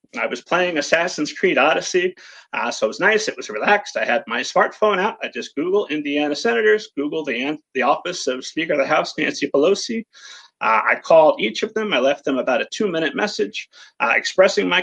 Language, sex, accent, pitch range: English, male, American, 145-230 Hz